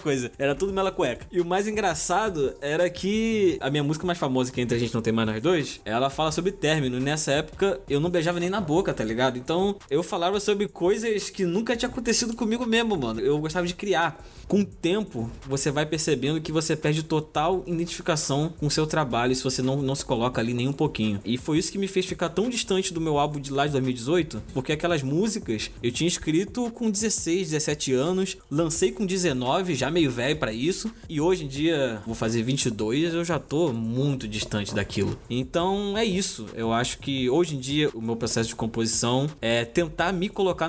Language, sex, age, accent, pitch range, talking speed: Portuguese, male, 20-39, Brazilian, 125-175 Hz, 215 wpm